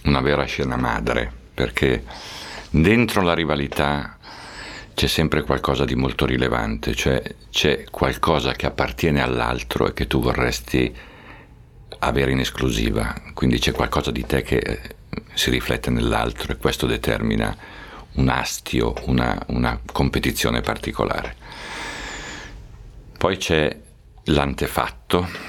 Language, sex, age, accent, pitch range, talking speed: Italian, male, 50-69, native, 65-80 Hz, 115 wpm